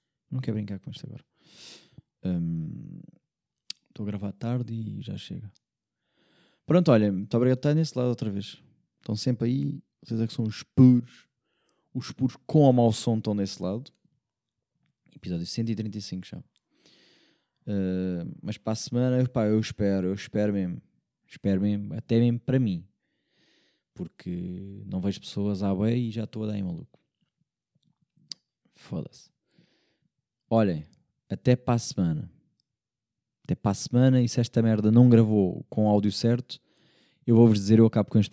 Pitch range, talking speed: 100-125 Hz, 160 wpm